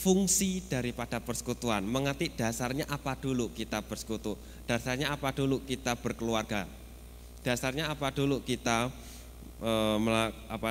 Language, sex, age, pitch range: Indonesian, male, 20-39, 100-125 Hz